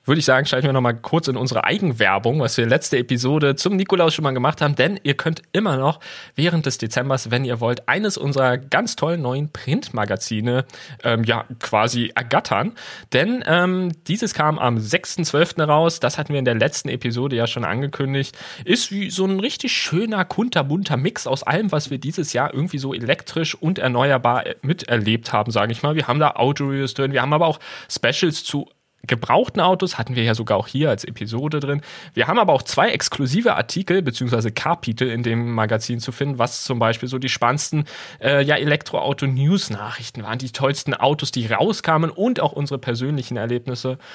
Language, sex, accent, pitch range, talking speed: German, male, German, 120-160 Hz, 190 wpm